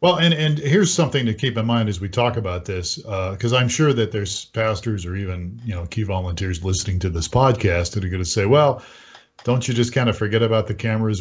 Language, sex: English, male